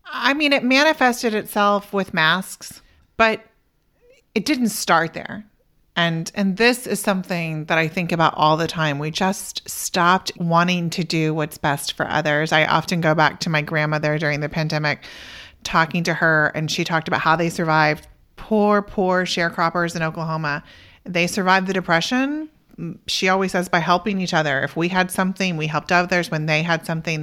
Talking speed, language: 180 wpm, English